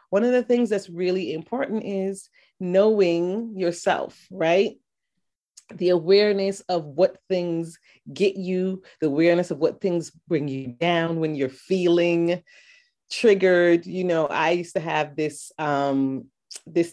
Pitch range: 155-195 Hz